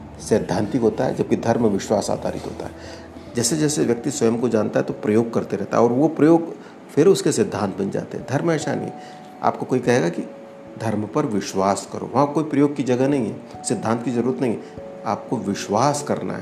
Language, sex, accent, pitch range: Hindi, male, native, 95-150 Hz